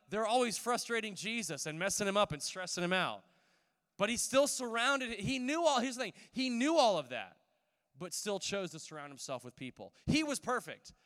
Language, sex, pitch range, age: English, male, 155-205 Hz, 20-39